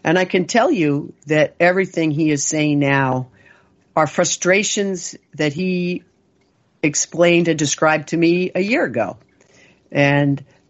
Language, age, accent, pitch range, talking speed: English, 50-69, American, 145-175 Hz, 135 wpm